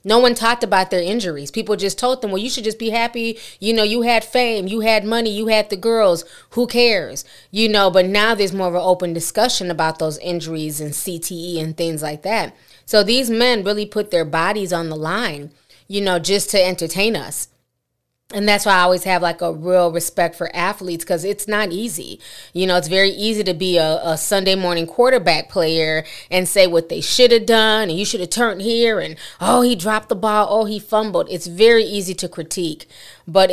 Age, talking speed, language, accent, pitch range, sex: 20-39, 220 wpm, English, American, 165-205 Hz, female